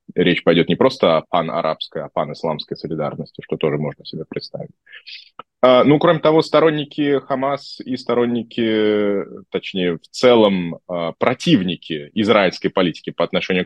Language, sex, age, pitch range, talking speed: Russian, male, 20-39, 90-120 Hz, 130 wpm